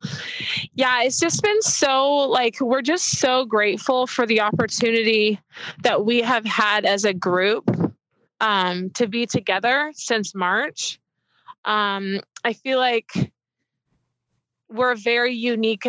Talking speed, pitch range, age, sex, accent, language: 125 wpm, 200-235 Hz, 20-39, female, American, English